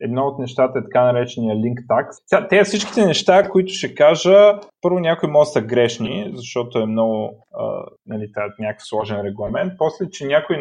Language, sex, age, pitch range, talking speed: Bulgarian, male, 20-39, 110-145 Hz, 160 wpm